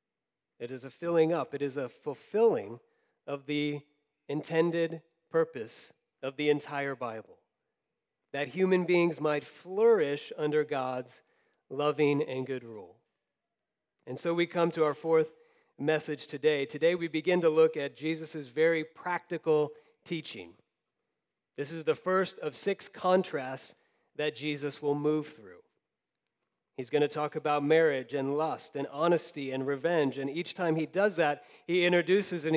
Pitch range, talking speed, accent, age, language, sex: 145-185 Hz, 145 wpm, American, 40-59, English, male